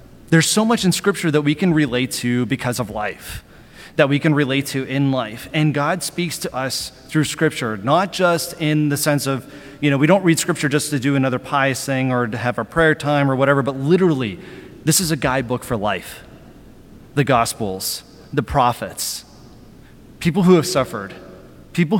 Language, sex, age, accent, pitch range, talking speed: English, male, 30-49, American, 125-160 Hz, 190 wpm